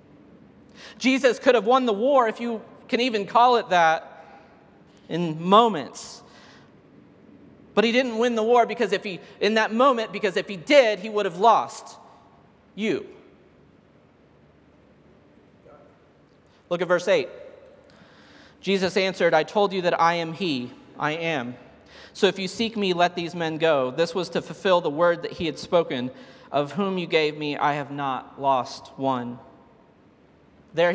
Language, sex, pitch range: English, male, 155-210 Hz